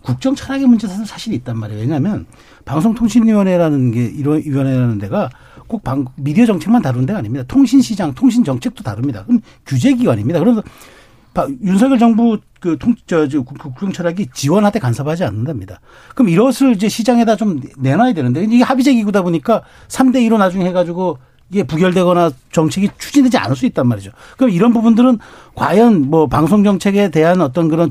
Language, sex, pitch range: Korean, male, 150-230 Hz